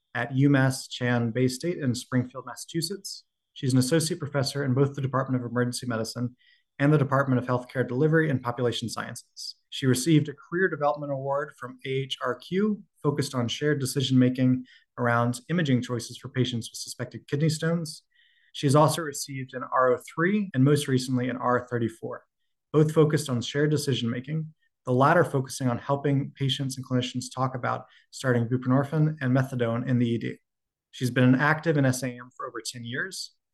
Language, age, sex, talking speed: English, 20-39, male, 165 wpm